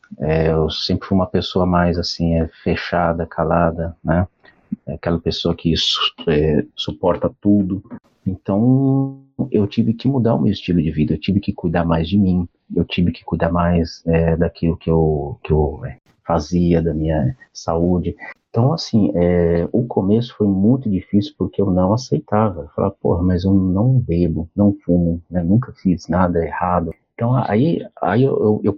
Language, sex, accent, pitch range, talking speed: Portuguese, male, Brazilian, 85-110 Hz, 175 wpm